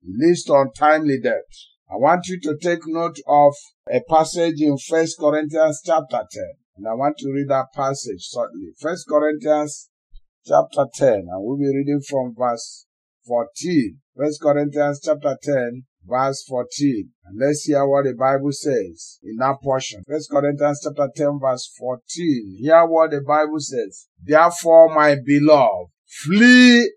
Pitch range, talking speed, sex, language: 140-170 Hz, 150 wpm, male, English